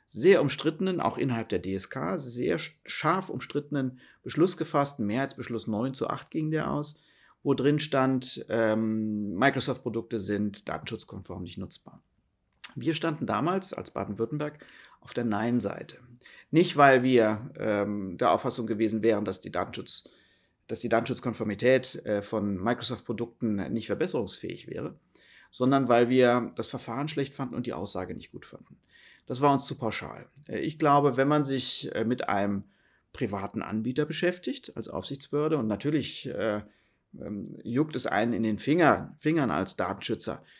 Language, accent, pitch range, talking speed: German, German, 110-135 Hz, 135 wpm